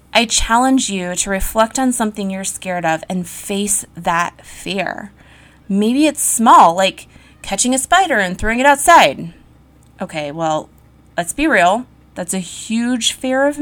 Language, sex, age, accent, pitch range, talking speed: English, female, 20-39, American, 190-270 Hz, 155 wpm